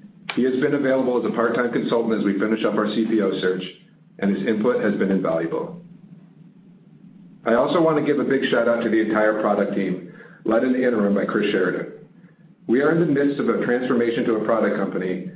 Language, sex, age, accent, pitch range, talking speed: English, male, 50-69, American, 100-145 Hz, 210 wpm